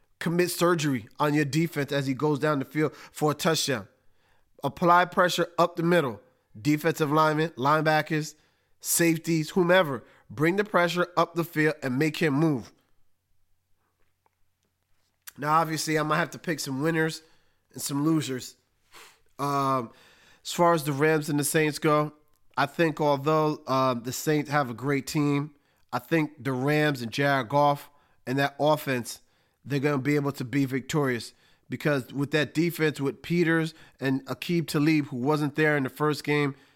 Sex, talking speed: male, 165 wpm